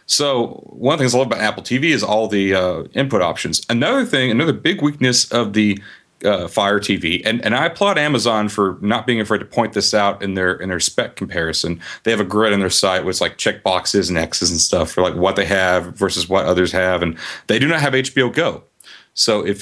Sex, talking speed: male, 230 wpm